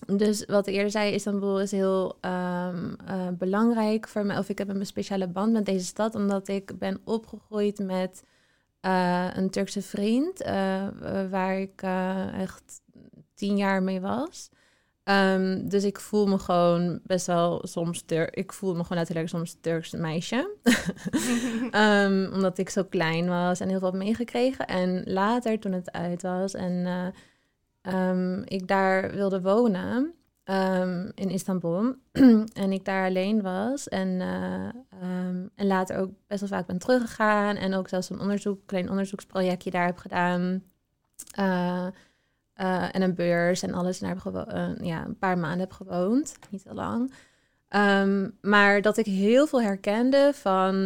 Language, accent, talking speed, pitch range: English, Dutch, 165 wpm, 185-205 Hz